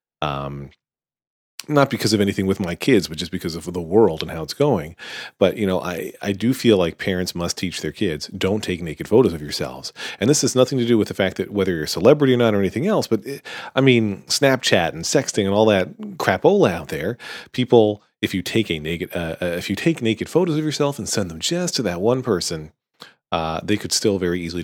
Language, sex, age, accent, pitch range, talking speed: English, male, 40-59, American, 85-115 Hz, 240 wpm